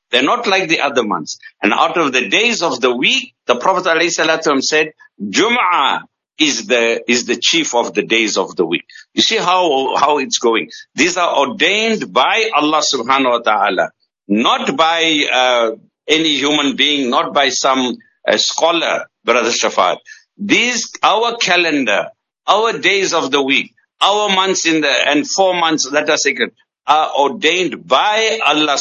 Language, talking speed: English, 165 wpm